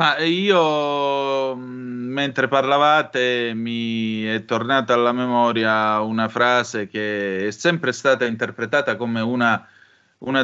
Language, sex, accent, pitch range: Italian, male, native, 110-135 Hz